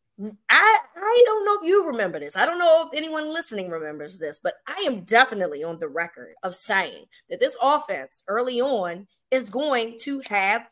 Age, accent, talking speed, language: 30-49, American, 190 wpm, English